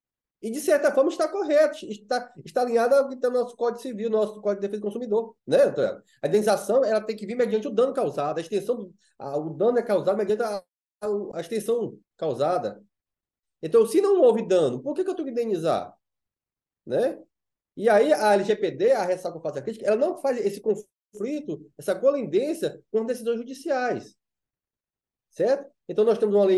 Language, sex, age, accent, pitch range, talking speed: Portuguese, male, 20-39, Brazilian, 160-245 Hz, 190 wpm